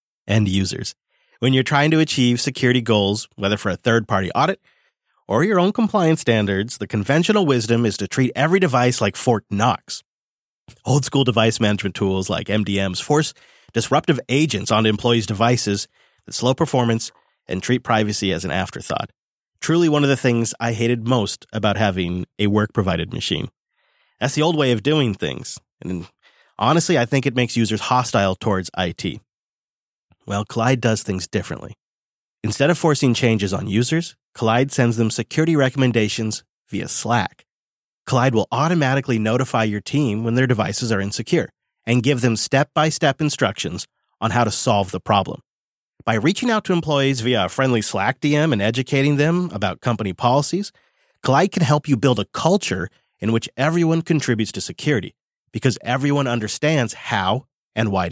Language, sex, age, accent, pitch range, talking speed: English, male, 30-49, American, 105-140 Hz, 160 wpm